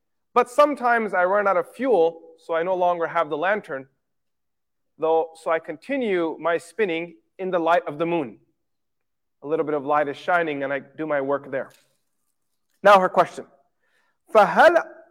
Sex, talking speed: male, 170 wpm